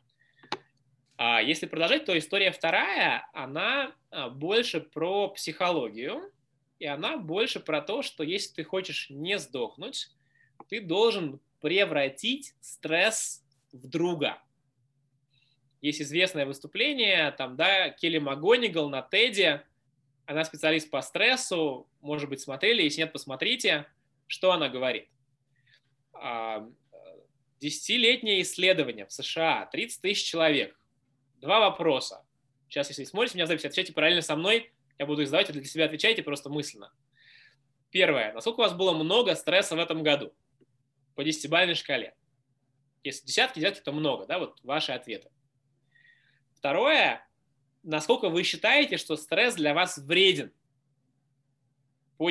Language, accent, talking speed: Russian, native, 125 wpm